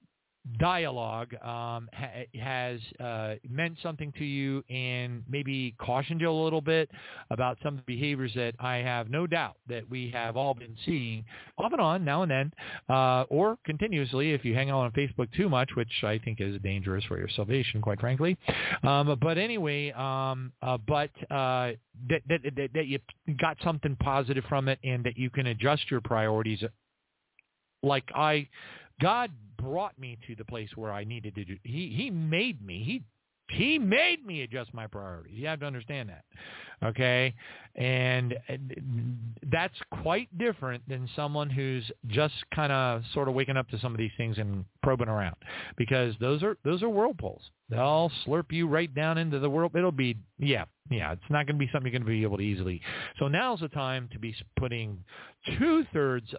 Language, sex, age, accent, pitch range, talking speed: English, male, 40-59, American, 115-145 Hz, 180 wpm